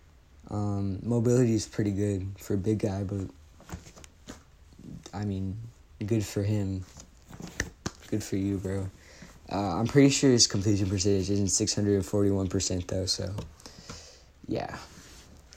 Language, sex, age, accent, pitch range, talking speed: English, male, 20-39, American, 90-105 Hz, 120 wpm